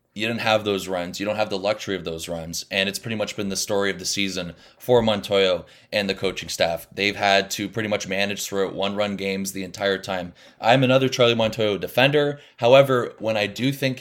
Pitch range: 95-115 Hz